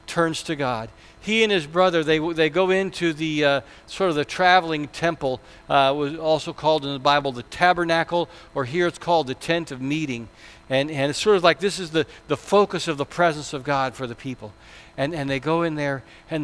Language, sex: English, male